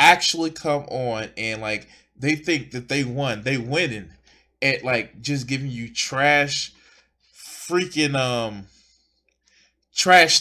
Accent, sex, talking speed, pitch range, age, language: American, male, 120 wpm, 115-155 Hz, 20-39, English